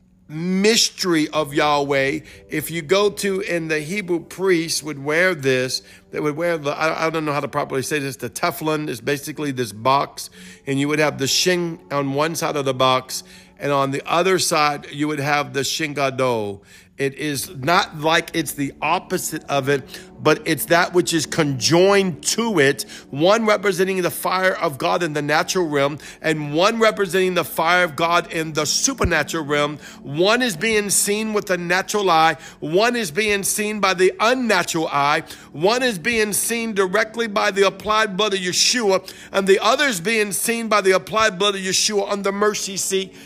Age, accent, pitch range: 50-69, American, 150-195 Hz